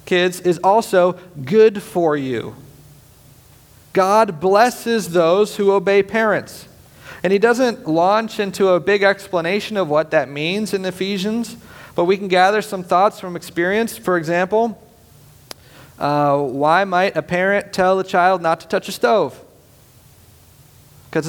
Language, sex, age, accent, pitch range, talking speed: English, male, 40-59, American, 145-200 Hz, 140 wpm